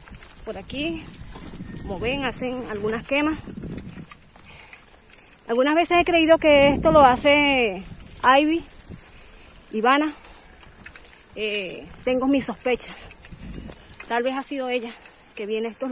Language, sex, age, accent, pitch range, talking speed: English, female, 30-49, American, 220-270 Hz, 115 wpm